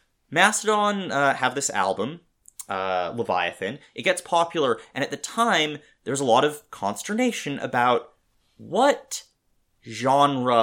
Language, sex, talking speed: English, male, 125 wpm